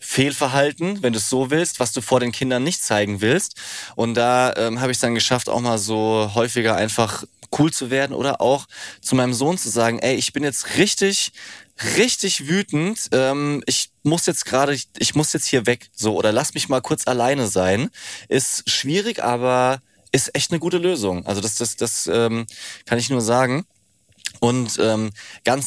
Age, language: 20-39, German